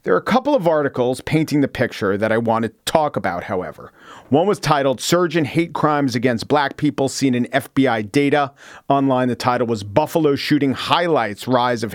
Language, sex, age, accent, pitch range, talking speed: English, male, 40-59, American, 125-150 Hz, 195 wpm